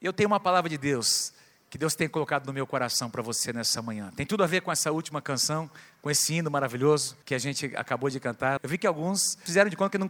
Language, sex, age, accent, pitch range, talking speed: Portuguese, male, 50-69, Brazilian, 140-170 Hz, 260 wpm